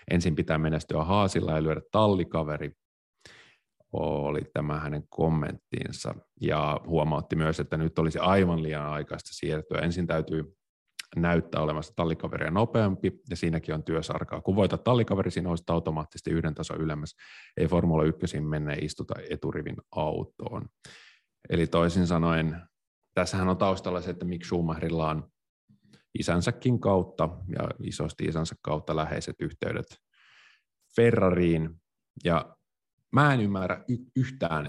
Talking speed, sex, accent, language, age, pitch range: 130 wpm, male, native, Finnish, 30-49, 80-90 Hz